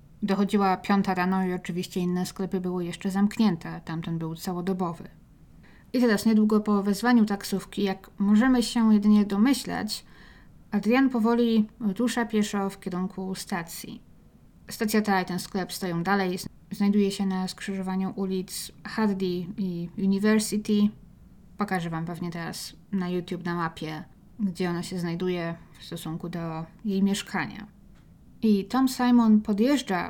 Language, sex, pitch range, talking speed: Polish, female, 185-215 Hz, 135 wpm